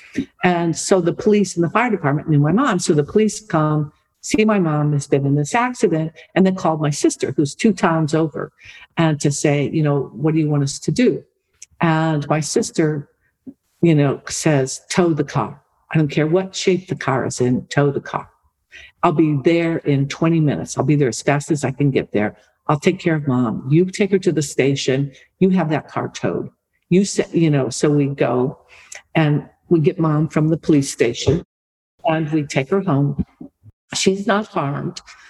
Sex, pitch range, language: female, 145-170 Hz, English